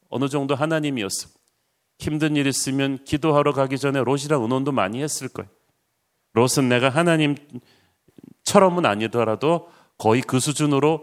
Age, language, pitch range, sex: 40-59, Korean, 120-145 Hz, male